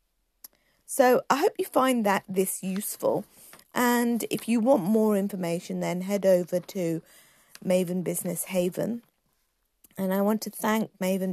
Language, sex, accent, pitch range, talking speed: English, female, British, 175-220 Hz, 145 wpm